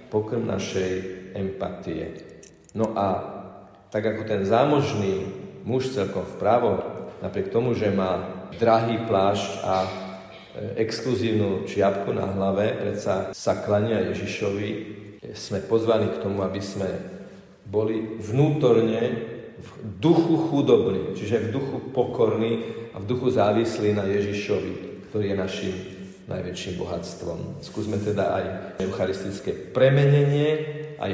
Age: 40-59